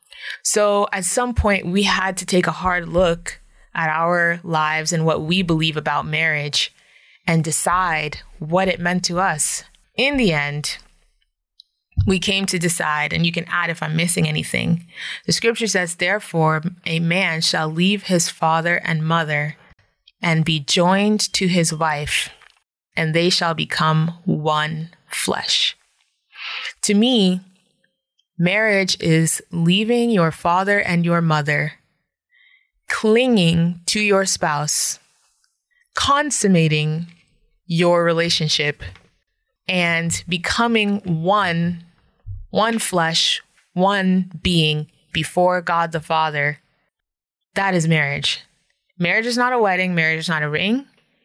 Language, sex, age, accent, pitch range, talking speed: English, female, 20-39, American, 160-190 Hz, 125 wpm